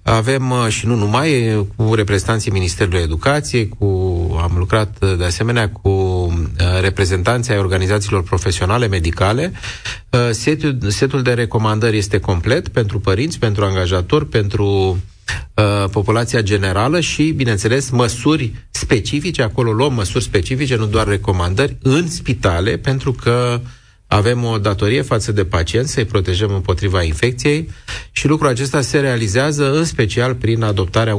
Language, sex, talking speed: Romanian, male, 125 wpm